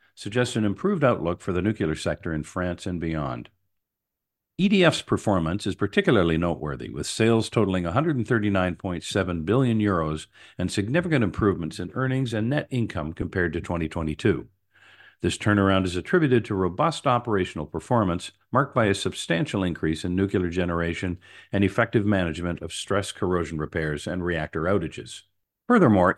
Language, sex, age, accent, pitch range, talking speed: English, male, 50-69, American, 85-120 Hz, 140 wpm